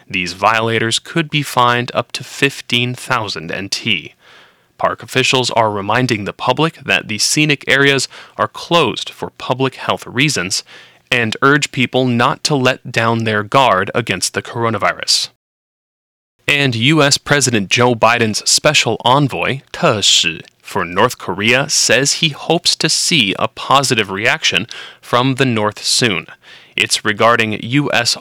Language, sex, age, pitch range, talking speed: English, male, 30-49, 115-135 Hz, 135 wpm